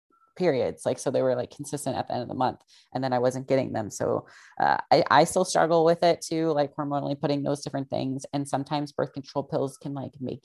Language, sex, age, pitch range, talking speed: English, female, 20-39, 130-145 Hz, 240 wpm